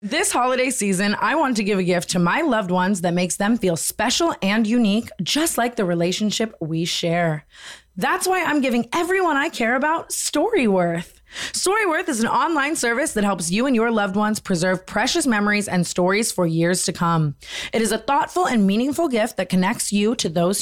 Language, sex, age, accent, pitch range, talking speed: English, female, 20-39, American, 185-260 Hz, 200 wpm